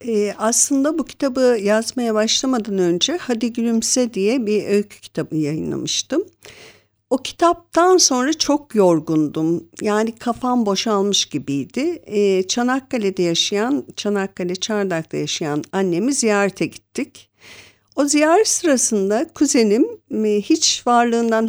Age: 50-69